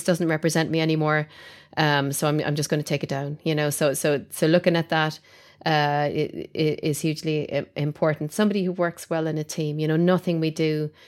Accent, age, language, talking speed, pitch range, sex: Irish, 30-49, English, 205 wpm, 150-170 Hz, female